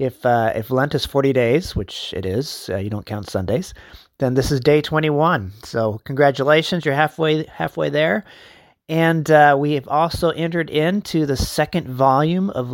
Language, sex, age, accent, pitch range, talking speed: English, male, 30-49, American, 120-155 Hz, 175 wpm